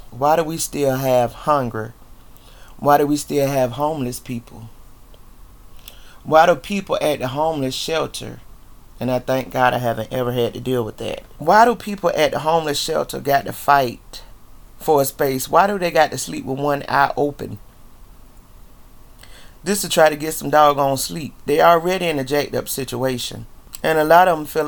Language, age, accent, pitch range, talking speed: English, 30-49, American, 125-150 Hz, 185 wpm